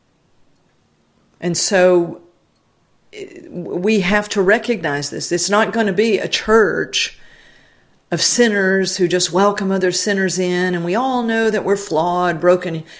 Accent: American